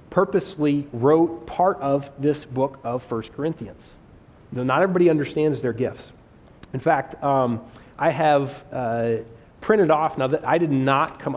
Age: 30-49